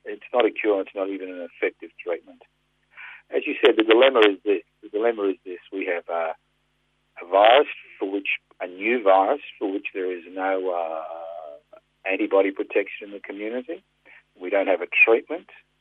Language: English